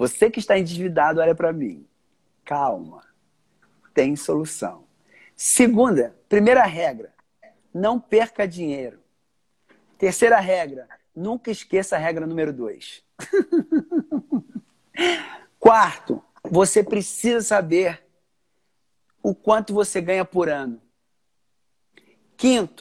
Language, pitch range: Portuguese, 175-245 Hz